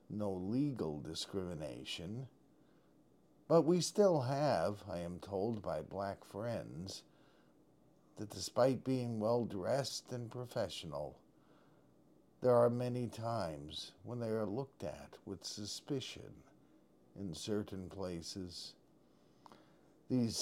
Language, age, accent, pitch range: English, 50-69, American, 100-130 Hz